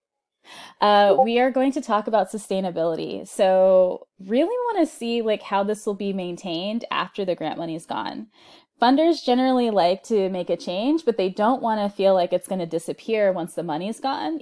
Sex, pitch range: female, 180-265 Hz